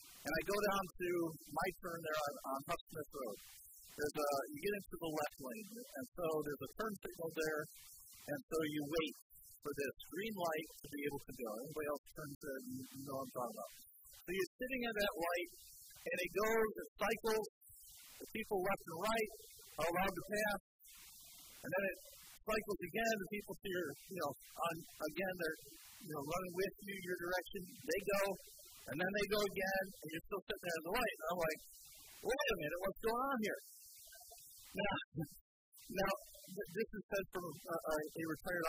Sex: male